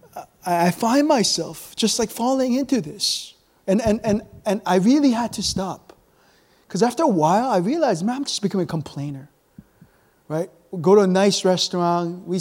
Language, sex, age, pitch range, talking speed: English, male, 20-39, 160-215 Hz, 180 wpm